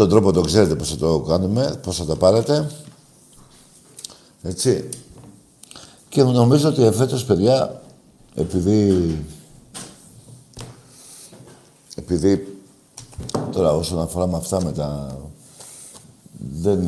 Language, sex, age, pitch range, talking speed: Greek, male, 60-79, 80-120 Hz, 95 wpm